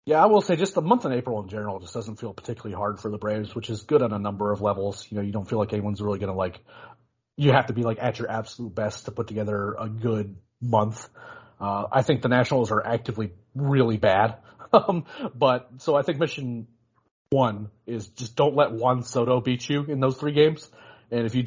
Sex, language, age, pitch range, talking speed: male, English, 30-49, 115-135 Hz, 235 wpm